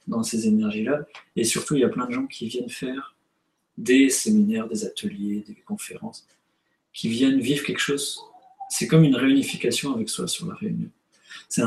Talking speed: 180 wpm